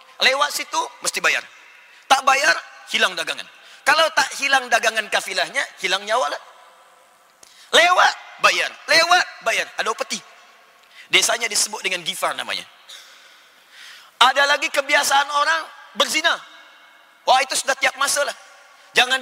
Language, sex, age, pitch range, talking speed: Indonesian, male, 30-49, 205-285 Hz, 120 wpm